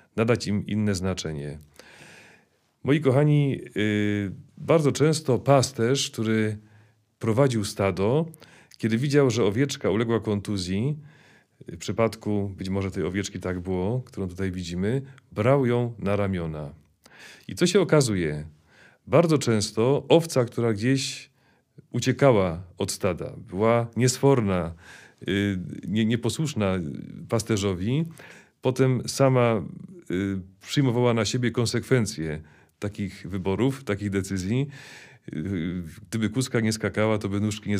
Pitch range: 100-135 Hz